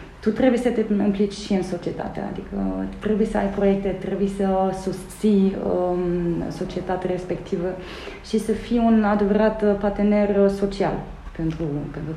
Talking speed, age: 140 wpm, 20-39